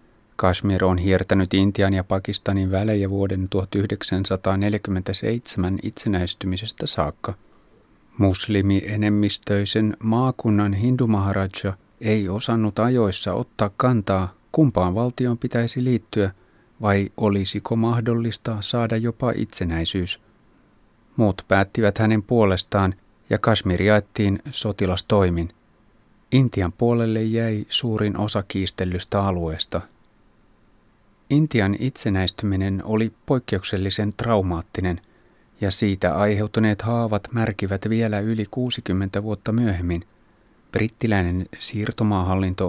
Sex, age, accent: male, 30-49, native